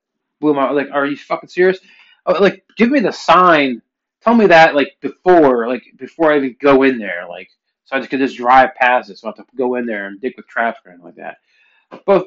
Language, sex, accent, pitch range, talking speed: English, male, American, 120-145 Hz, 235 wpm